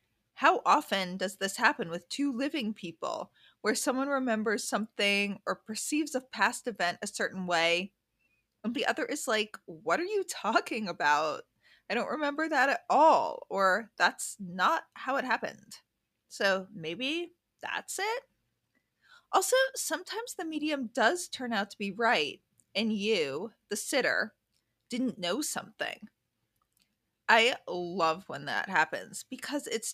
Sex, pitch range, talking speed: female, 205-285 Hz, 140 wpm